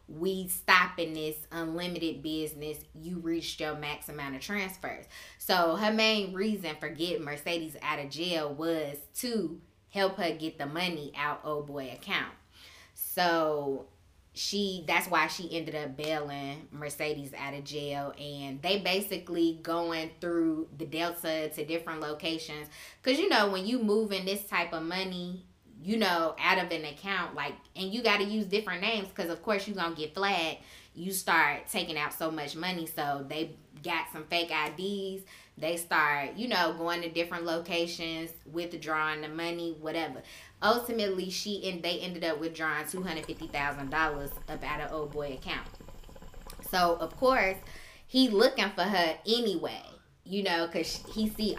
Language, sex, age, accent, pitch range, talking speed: English, female, 20-39, American, 150-185 Hz, 165 wpm